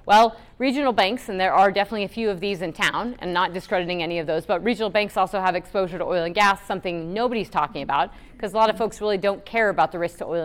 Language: English